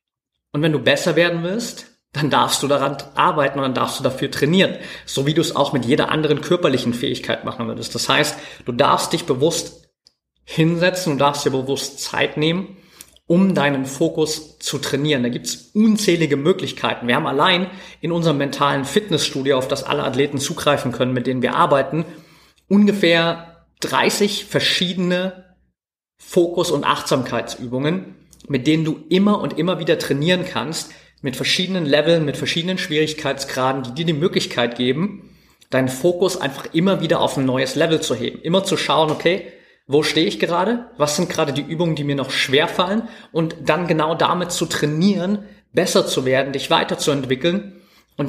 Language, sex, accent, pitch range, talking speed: German, male, German, 140-175 Hz, 170 wpm